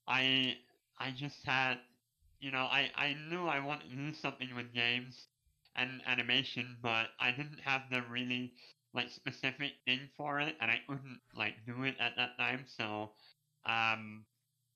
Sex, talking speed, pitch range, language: male, 165 wpm, 120-145 Hz, English